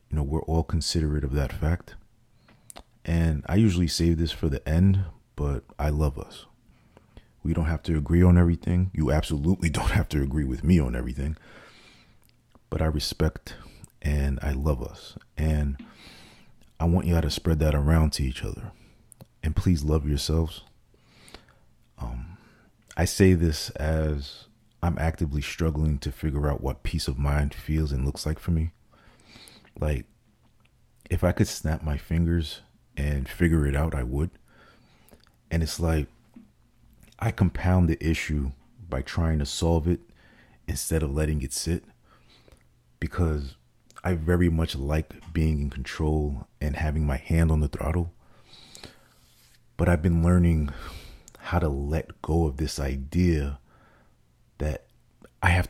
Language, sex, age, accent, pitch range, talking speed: English, male, 40-59, American, 75-85 Hz, 150 wpm